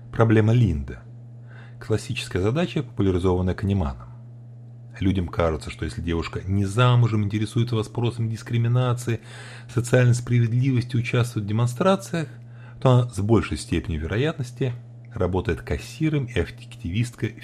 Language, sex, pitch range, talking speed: Russian, male, 100-120 Hz, 105 wpm